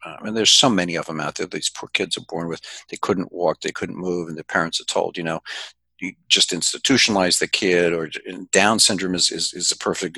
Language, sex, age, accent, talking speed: English, male, 50-69, American, 250 wpm